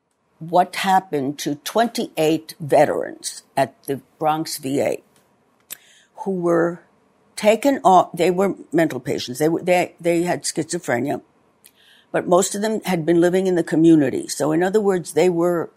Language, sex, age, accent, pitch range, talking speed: English, female, 60-79, American, 155-195 Hz, 150 wpm